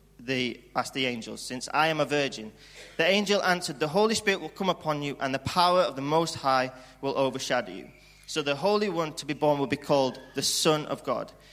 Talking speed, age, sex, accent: 225 wpm, 30-49, male, British